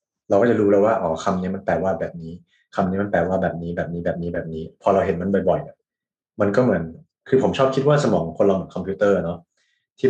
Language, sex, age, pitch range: Thai, male, 20-39, 90-105 Hz